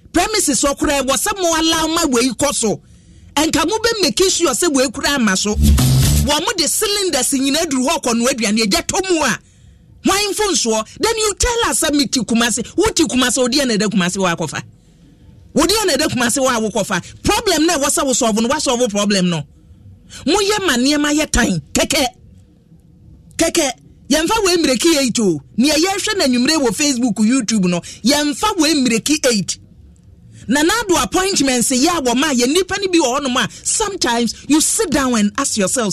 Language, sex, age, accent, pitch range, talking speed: English, male, 40-59, Nigerian, 230-340 Hz, 175 wpm